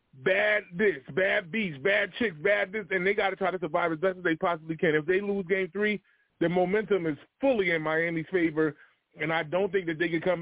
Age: 20-39